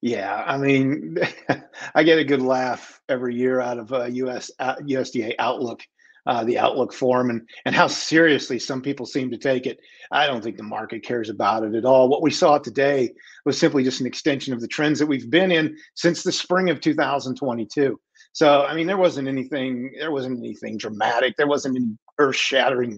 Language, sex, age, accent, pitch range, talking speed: English, male, 40-59, American, 125-160 Hz, 200 wpm